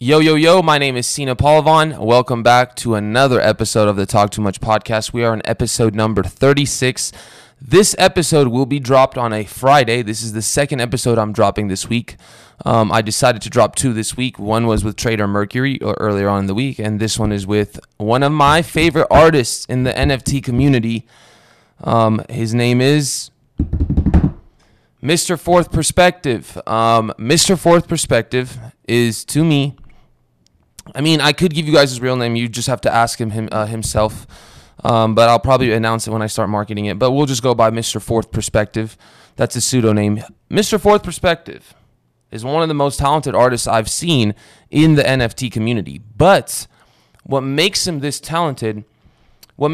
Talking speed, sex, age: 185 wpm, male, 20-39